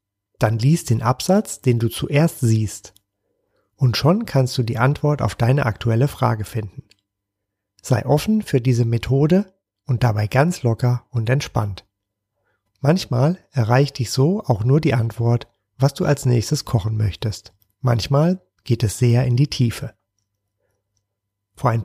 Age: 40-59